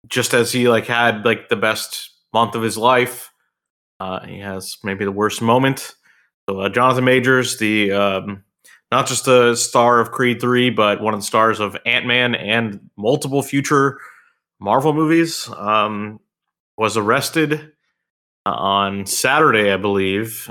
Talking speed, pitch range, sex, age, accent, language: 150 wpm, 100-125 Hz, male, 20-39, American, English